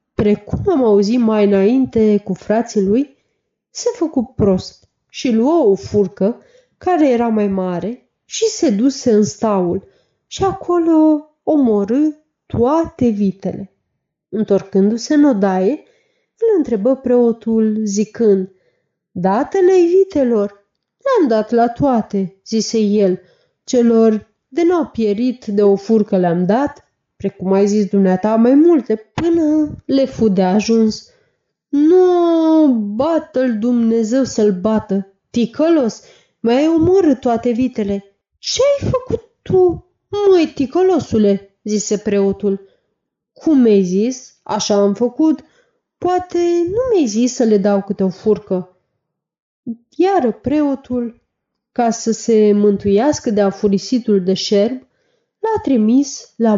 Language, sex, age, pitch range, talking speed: Romanian, female, 30-49, 205-305 Hz, 120 wpm